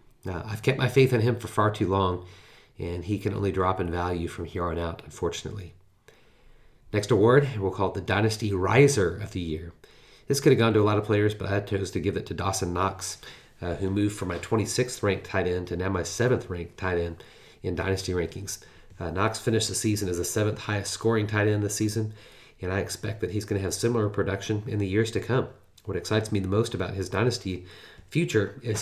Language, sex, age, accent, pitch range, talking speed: English, male, 30-49, American, 95-110 Hz, 220 wpm